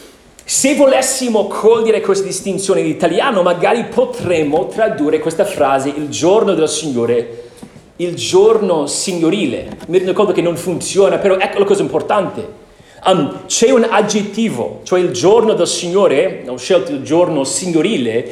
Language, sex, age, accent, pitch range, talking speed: Italian, male, 40-59, native, 165-235 Hz, 140 wpm